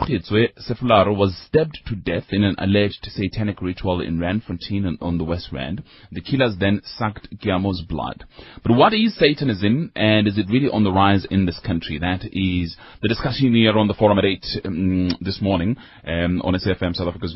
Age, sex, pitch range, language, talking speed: 30-49, male, 90-115 Hz, English, 185 wpm